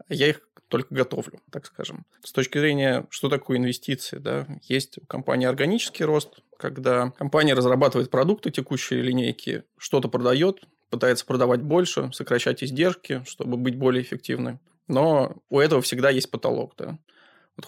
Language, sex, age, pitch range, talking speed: Russian, male, 20-39, 125-145 Hz, 145 wpm